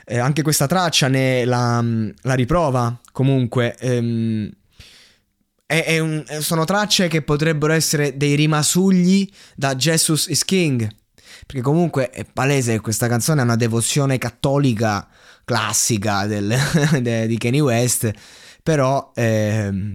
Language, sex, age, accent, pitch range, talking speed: Italian, male, 20-39, native, 110-135 Hz, 115 wpm